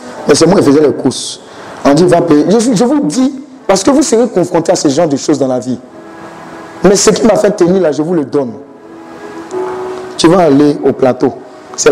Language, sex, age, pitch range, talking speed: French, male, 50-69, 125-190 Hz, 230 wpm